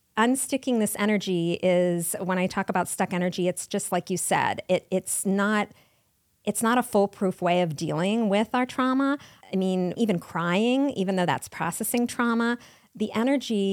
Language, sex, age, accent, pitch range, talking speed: English, female, 40-59, American, 160-195 Hz, 170 wpm